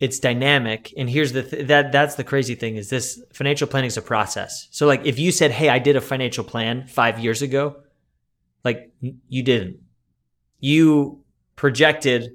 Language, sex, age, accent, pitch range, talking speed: English, male, 20-39, American, 115-140 Hz, 180 wpm